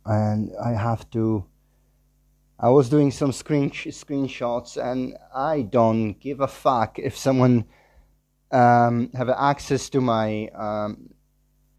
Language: English